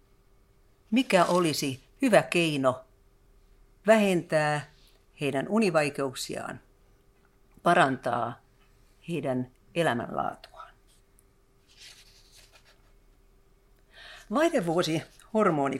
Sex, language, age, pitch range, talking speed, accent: female, Finnish, 50-69, 130-190 Hz, 40 wpm, native